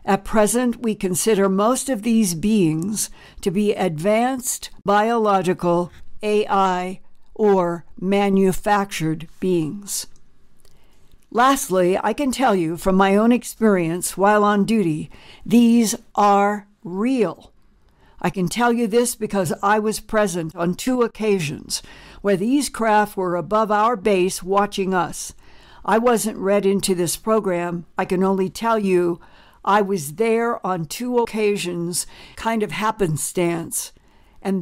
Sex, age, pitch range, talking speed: female, 60-79, 180-220 Hz, 125 wpm